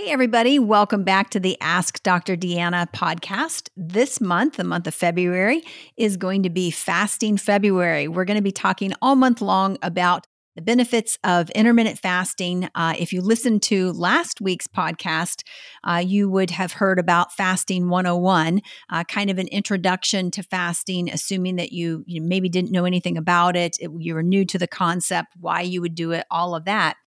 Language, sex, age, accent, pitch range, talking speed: English, female, 50-69, American, 175-205 Hz, 185 wpm